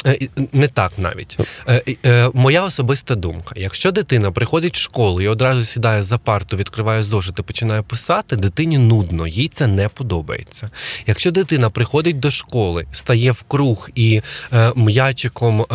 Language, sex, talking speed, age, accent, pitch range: Ukrainian, male, 140 wpm, 20-39, native, 105-135 Hz